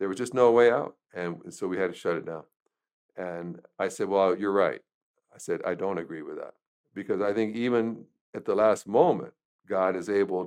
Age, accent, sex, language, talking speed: 60-79, American, male, English, 220 wpm